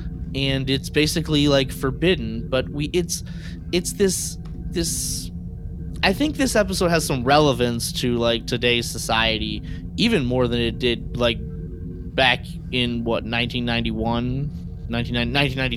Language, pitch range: English, 105-130 Hz